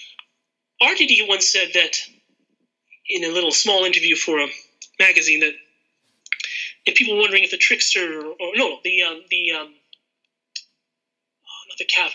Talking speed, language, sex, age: 150 wpm, English, male, 30-49